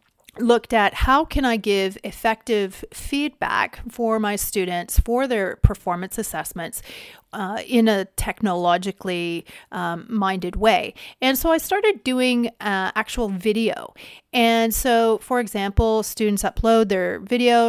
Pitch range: 190-240 Hz